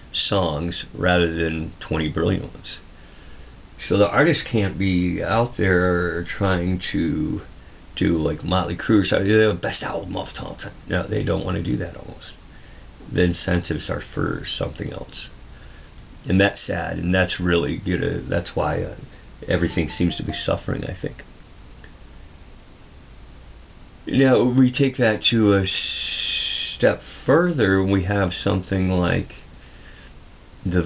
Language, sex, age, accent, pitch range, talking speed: English, male, 40-59, American, 85-100 Hz, 135 wpm